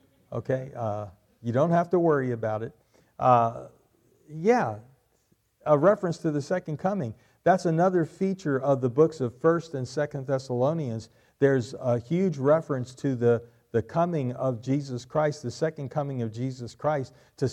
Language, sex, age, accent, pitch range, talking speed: English, male, 50-69, American, 120-150 Hz, 160 wpm